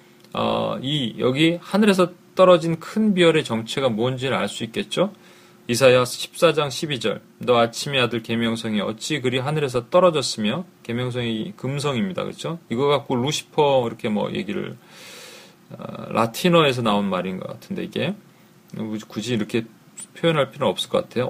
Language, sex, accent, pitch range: Korean, male, native, 125-175 Hz